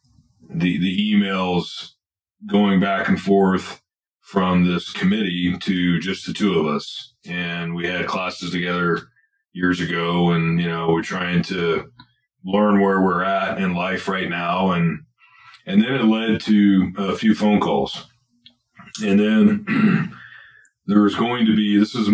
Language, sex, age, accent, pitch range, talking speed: English, male, 30-49, American, 90-120 Hz, 150 wpm